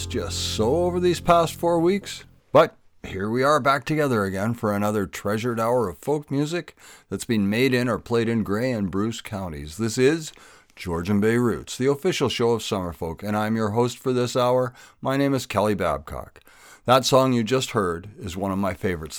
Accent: American